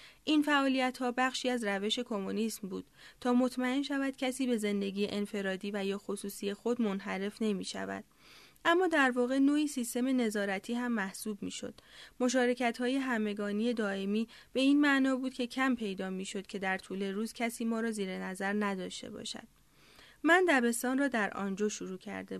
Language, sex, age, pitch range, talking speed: Persian, female, 30-49, 200-250 Hz, 160 wpm